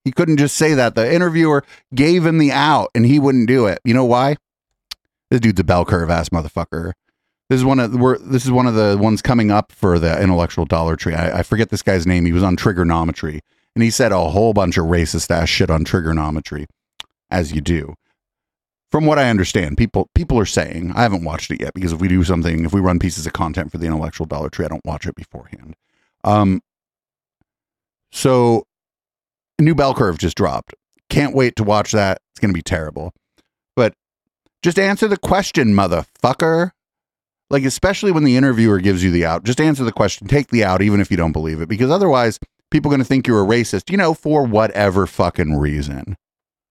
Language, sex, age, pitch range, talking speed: English, male, 30-49, 90-130 Hz, 210 wpm